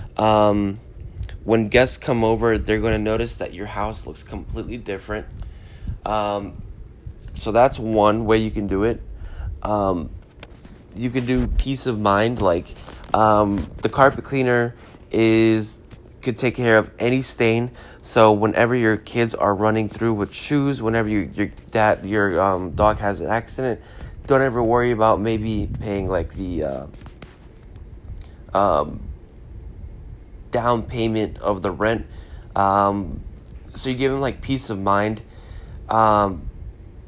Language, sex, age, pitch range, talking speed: English, male, 20-39, 100-120 Hz, 140 wpm